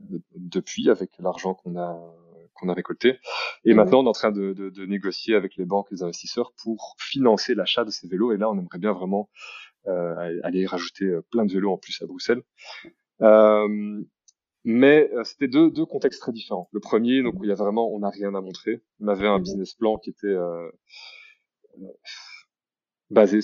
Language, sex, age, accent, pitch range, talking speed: French, male, 20-39, French, 90-110 Hz, 190 wpm